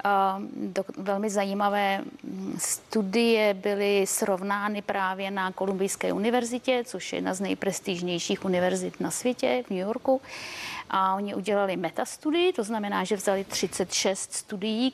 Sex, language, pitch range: female, Czech, 195-235 Hz